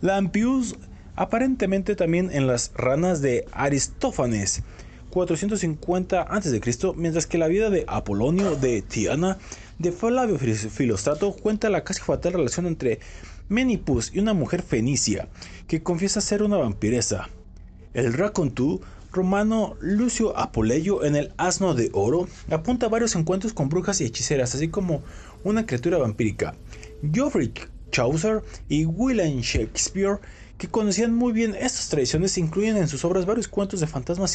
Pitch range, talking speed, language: 125-200 Hz, 140 wpm, Spanish